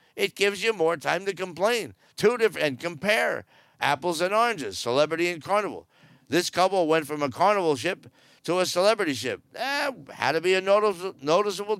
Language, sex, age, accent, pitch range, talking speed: English, male, 50-69, American, 120-165 Hz, 180 wpm